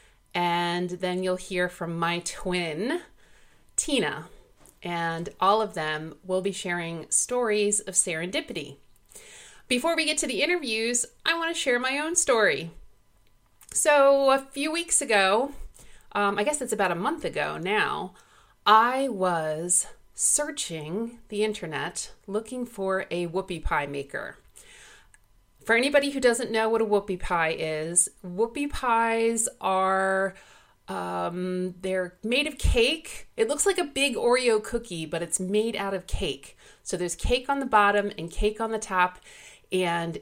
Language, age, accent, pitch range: English, 30-49, American, 175-235 Hz